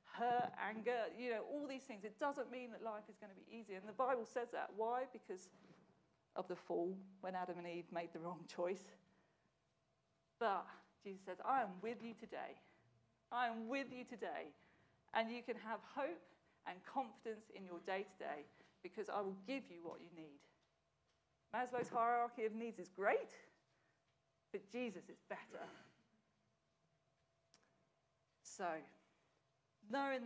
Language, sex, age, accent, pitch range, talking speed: English, female, 40-59, British, 185-240 Hz, 155 wpm